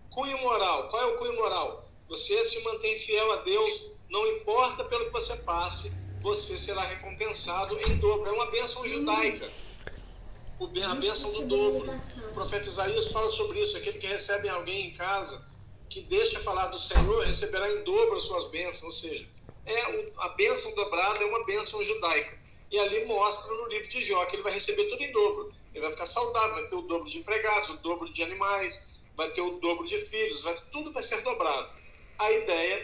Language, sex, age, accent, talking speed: Portuguese, male, 50-69, Brazilian, 195 wpm